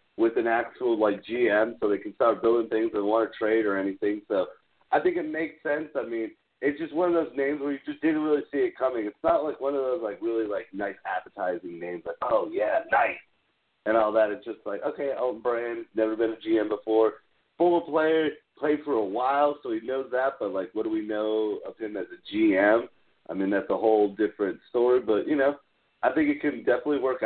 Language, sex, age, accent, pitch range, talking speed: English, male, 40-59, American, 105-155 Hz, 235 wpm